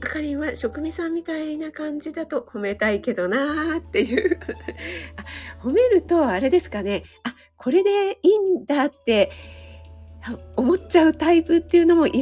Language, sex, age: Japanese, female, 40-59